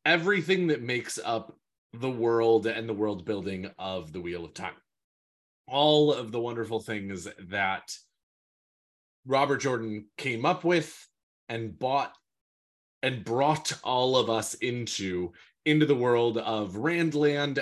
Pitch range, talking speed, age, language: 100-145 Hz, 135 wpm, 20-39, English